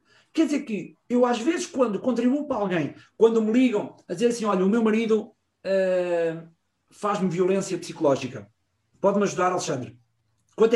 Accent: Portuguese